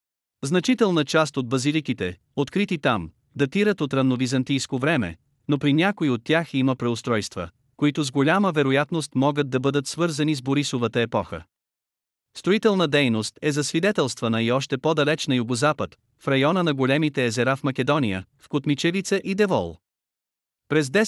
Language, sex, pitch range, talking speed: Bulgarian, male, 120-155 Hz, 140 wpm